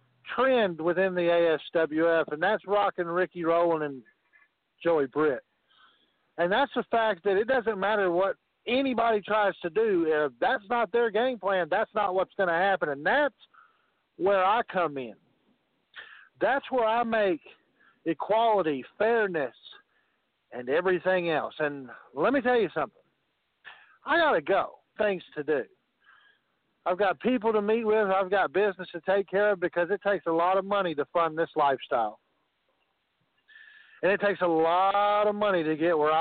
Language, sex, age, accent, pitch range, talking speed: English, male, 50-69, American, 160-220 Hz, 165 wpm